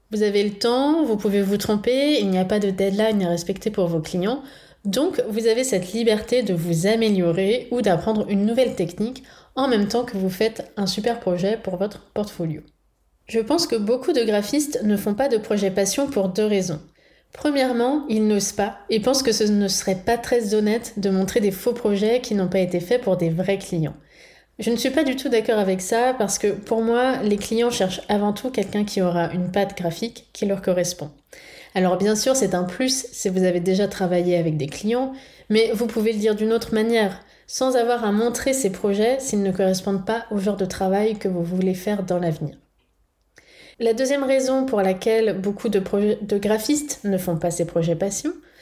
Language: French